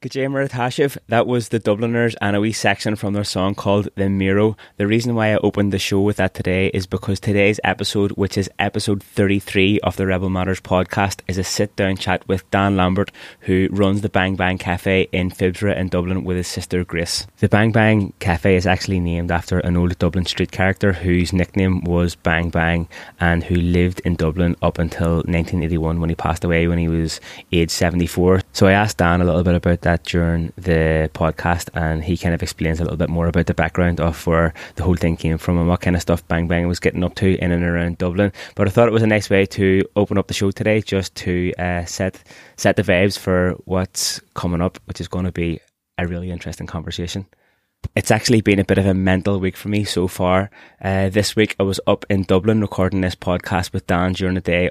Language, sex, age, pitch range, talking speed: English, male, 20-39, 85-100 Hz, 225 wpm